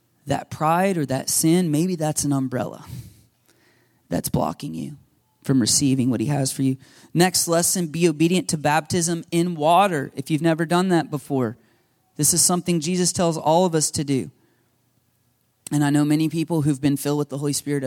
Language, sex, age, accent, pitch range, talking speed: English, male, 30-49, American, 130-160 Hz, 185 wpm